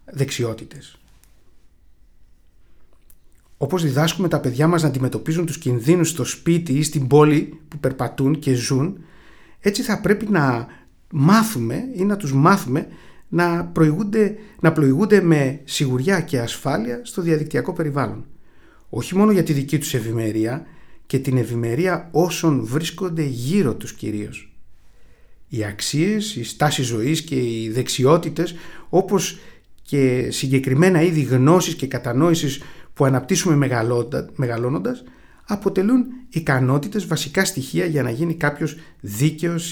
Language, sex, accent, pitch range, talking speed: Greek, male, native, 125-170 Hz, 120 wpm